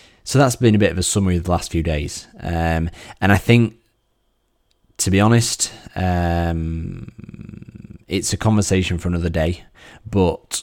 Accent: British